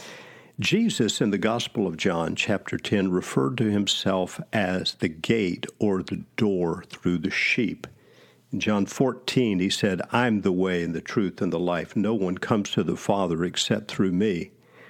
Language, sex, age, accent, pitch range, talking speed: English, male, 50-69, American, 95-135 Hz, 175 wpm